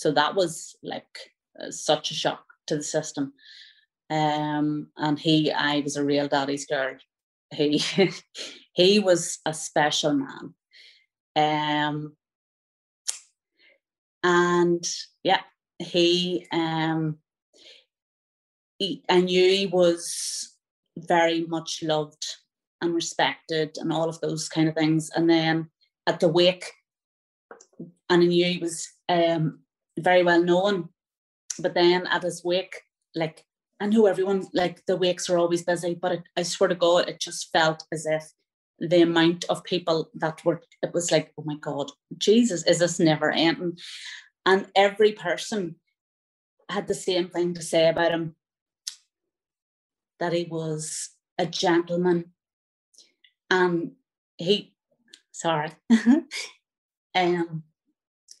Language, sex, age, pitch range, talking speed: English, female, 30-49, 155-180 Hz, 125 wpm